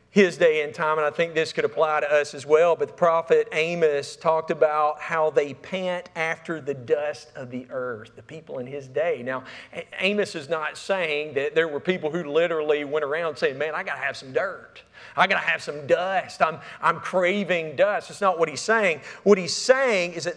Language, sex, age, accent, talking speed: English, male, 40-59, American, 220 wpm